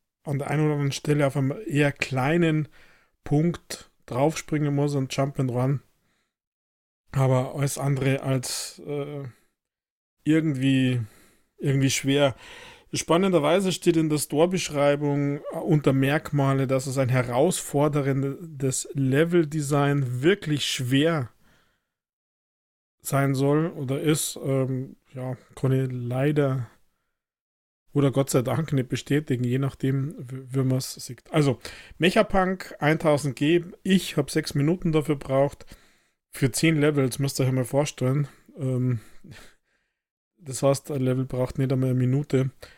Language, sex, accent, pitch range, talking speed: German, male, German, 130-150 Hz, 120 wpm